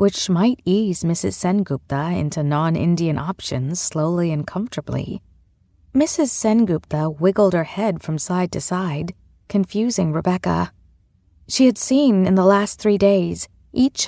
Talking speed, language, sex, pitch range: 130 wpm, English, female, 150-215 Hz